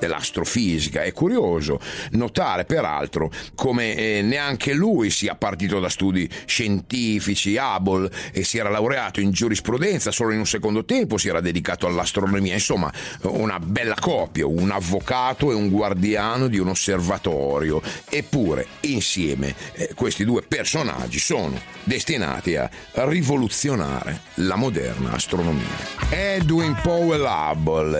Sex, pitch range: male, 85-125 Hz